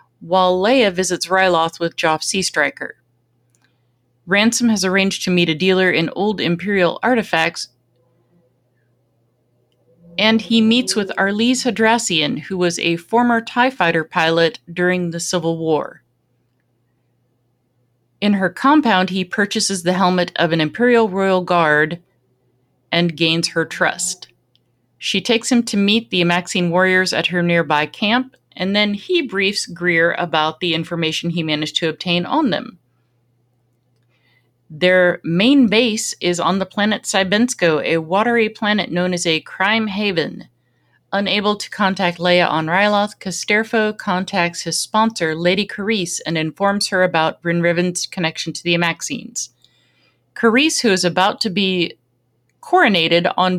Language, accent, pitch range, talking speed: English, American, 160-205 Hz, 140 wpm